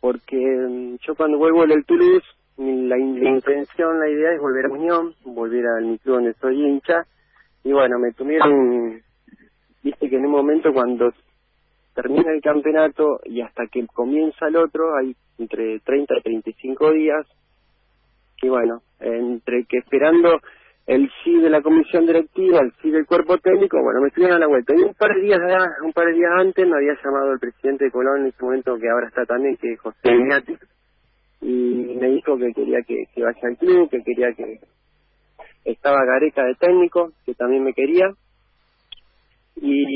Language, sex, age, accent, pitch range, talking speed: Spanish, male, 40-59, Argentinian, 125-165 Hz, 175 wpm